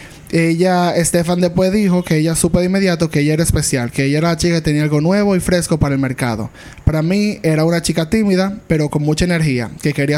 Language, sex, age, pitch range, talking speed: Spanish, male, 20-39, 150-180 Hz, 230 wpm